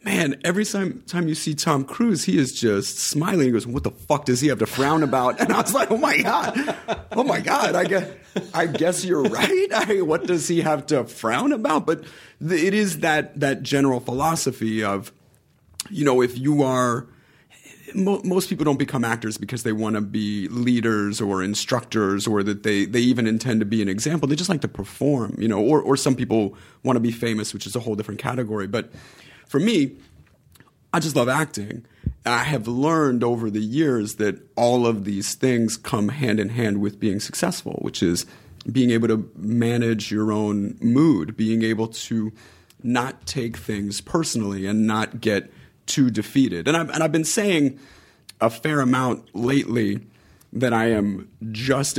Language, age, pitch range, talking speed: English, 30-49, 110-150 Hz, 190 wpm